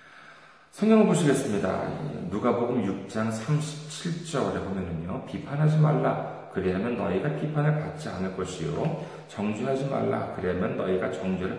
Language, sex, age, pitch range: Korean, male, 30-49, 135-175 Hz